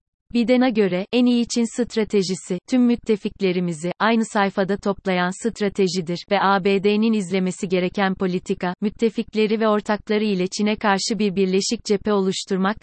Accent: native